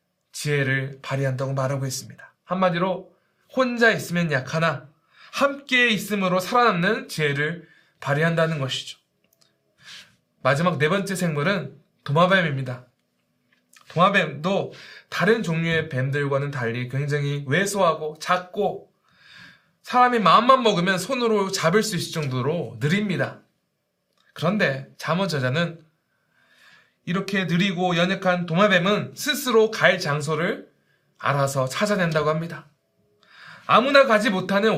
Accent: native